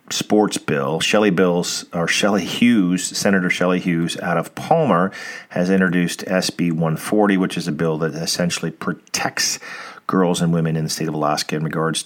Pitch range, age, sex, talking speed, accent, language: 85-100 Hz, 40-59, male, 170 wpm, American, English